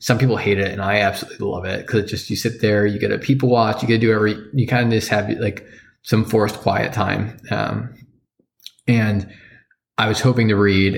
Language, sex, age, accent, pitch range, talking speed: English, male, 20-39, American, 100-115 Hz, 230 wpm